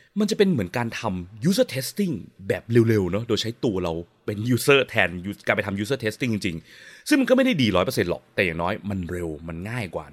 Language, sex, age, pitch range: Thai, male, 20-39, 95-130 Hz